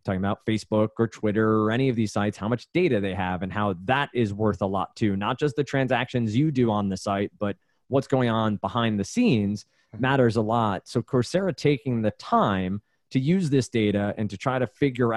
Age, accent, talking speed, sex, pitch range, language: 20-39, American, 220 wpm, male, 105-130 Hz, English